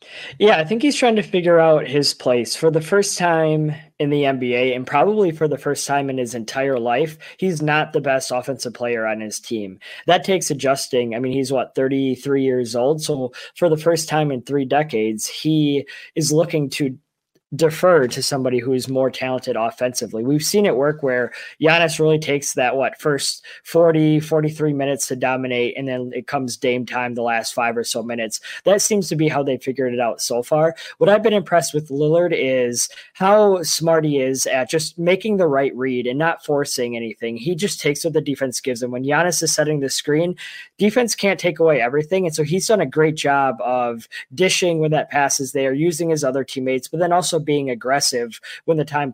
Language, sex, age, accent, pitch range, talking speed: English, male, 20-39, American, 130-165 Hz, 210 wpm